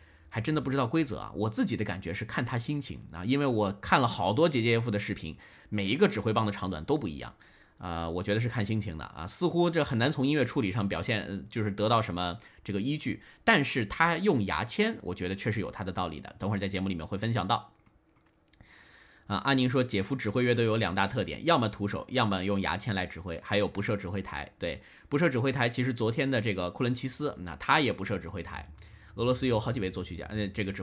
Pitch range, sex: 95-125 Hz, male